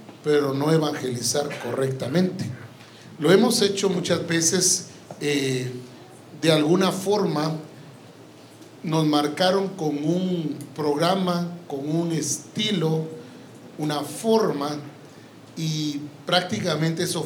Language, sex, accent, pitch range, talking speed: English, male, Mexican, 145-185 Hz, 90 wpm